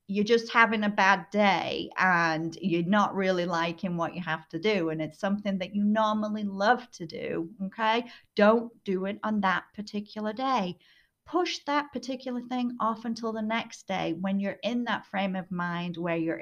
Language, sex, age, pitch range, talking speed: English, female, 30-49, 170-215 Hz, 185 wpm